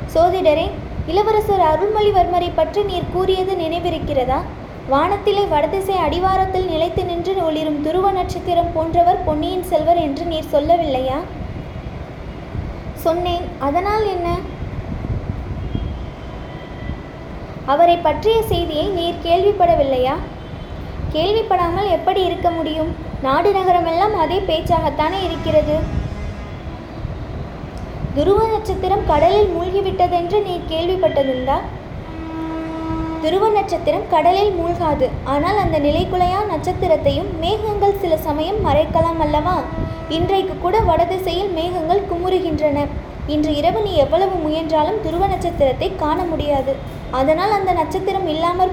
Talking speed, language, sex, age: 85 wpm, Tamil, female, 20-39